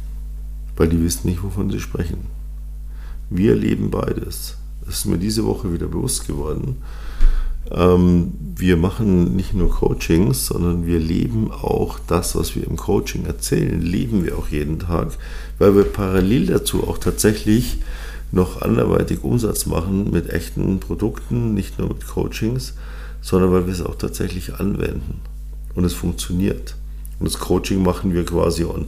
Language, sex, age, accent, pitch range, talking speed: German, male, 50-69, German, 75-95 Hz, 150 wpm